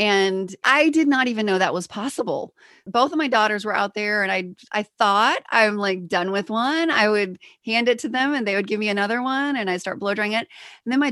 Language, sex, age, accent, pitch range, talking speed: English, female, 30-49, American, 200-270 Hz, 255 wpm